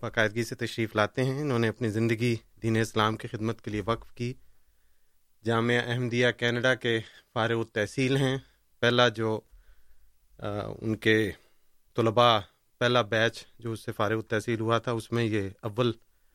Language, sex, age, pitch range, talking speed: Urdu, male, 30-49, 110-125 Hz, 155 wpm